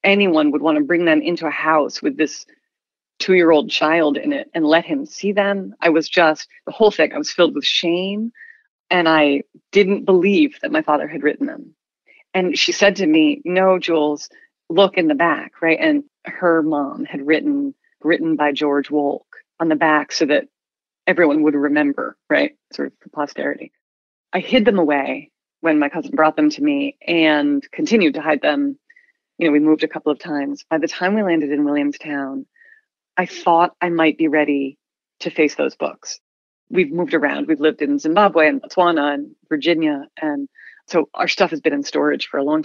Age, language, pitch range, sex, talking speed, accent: 30-49, English, 155-215 Hz, female, 195 wpm, American